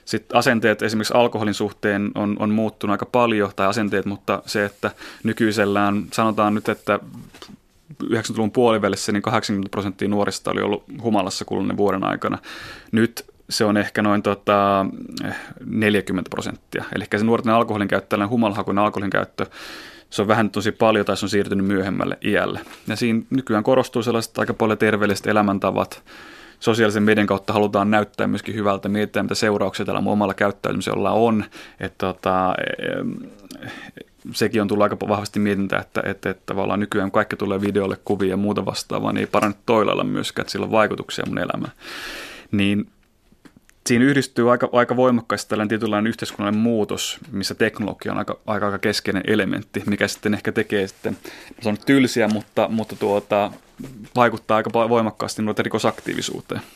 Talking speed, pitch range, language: 160 wpm, 100-110 Hz, Finnish